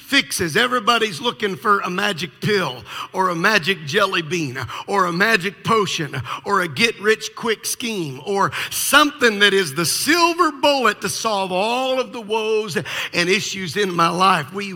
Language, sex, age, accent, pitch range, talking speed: English, male, 50-69, American, 195-245 Hz, 165 wpm